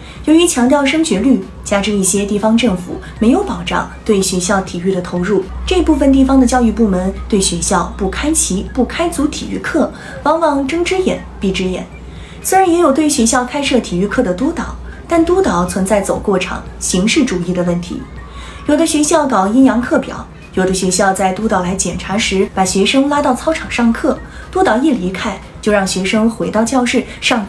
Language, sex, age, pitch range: Chinese, female, 20-39, 190-285 Hz